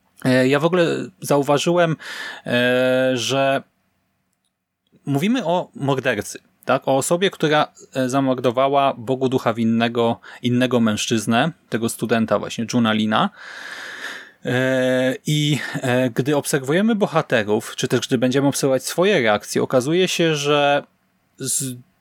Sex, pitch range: male, 120-155 Hz